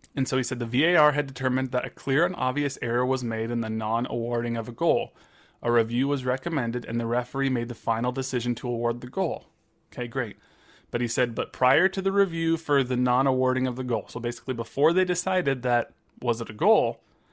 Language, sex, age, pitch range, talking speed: English, male, 30-49, 120-140 Hz, 225 wpm